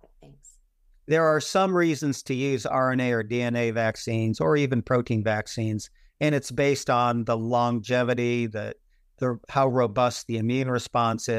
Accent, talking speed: American, 140 wpm